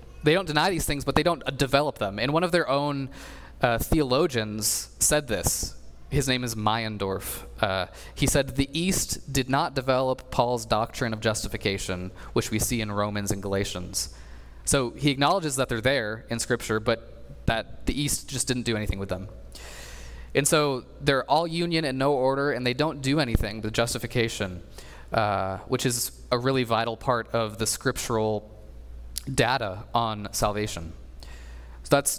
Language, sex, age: English, male, 20-39